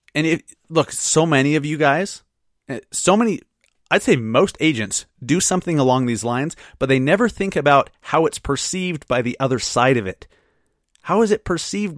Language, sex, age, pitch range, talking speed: English, male, 30-49, 125-155 Hz, 180 wpm